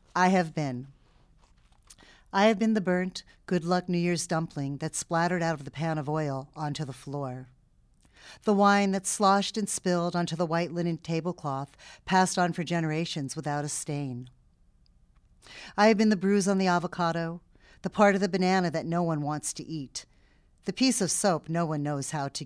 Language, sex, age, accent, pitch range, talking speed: English, female, 40-59, American, 150-185 Hz, 185 wpm